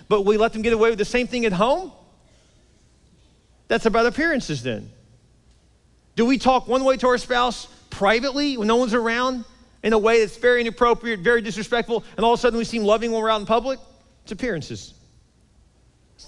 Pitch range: 140-215 Hz